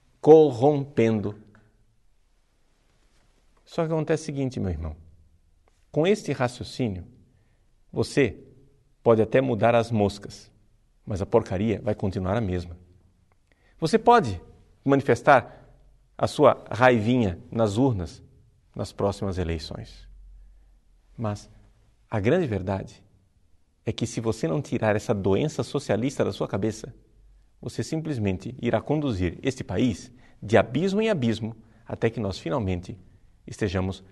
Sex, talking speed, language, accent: male, 115 wpm, Portuguese, Brazilian